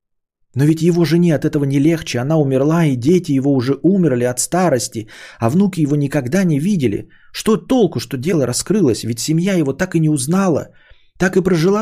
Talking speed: 195 wpm